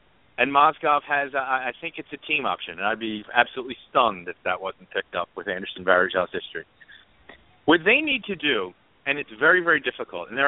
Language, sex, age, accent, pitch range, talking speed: English, male, 50-69, American, 115-155 Hz, 200 wpm